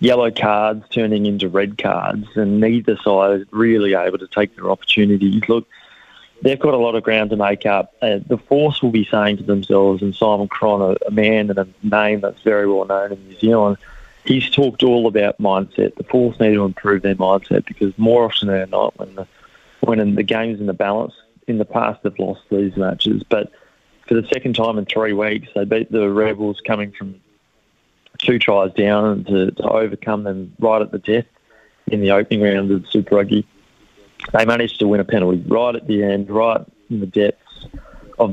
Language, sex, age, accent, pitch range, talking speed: English, male, 20-39, Australian, 100-115 Hz, 205 wpm